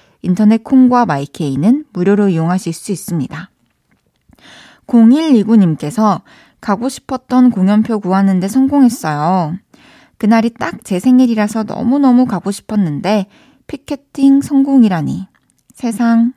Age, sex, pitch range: 20-39, female, 180-250 Hz